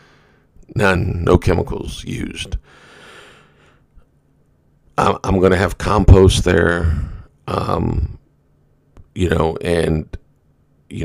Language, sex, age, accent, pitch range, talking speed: English, male, 50-69, American, 80-95 Hz, 75 wpm